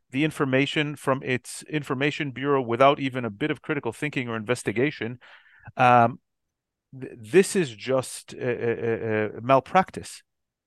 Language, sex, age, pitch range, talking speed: English, male, 40-59, 115-140 Hz, 135 wpm